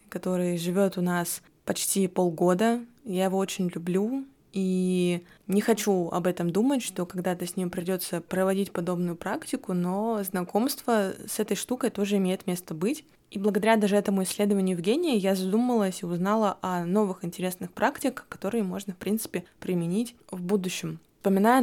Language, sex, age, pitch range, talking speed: Russian, female, 20-39, 180-210 Hz, 155 wpm